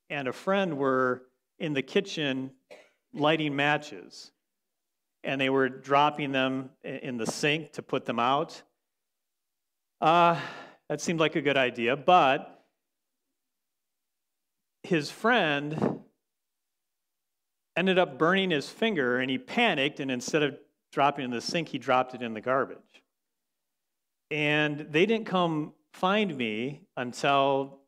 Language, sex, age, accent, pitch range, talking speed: English, male, 40-59, American, 130-155 Hz, 130 wpm